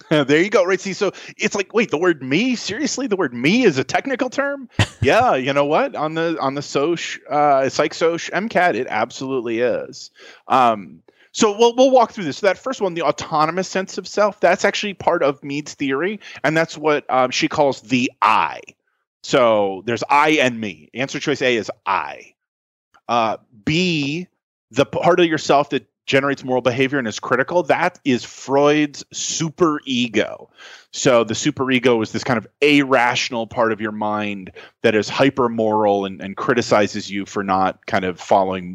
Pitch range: 115-175 Hz